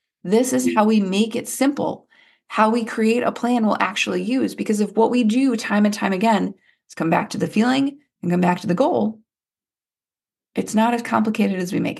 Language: English